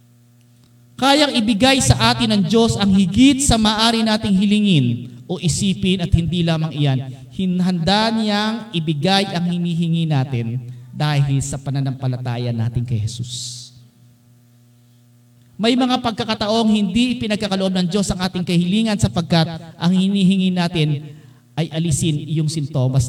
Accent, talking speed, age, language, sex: native, 125 wpm, 40-59, Filipino, male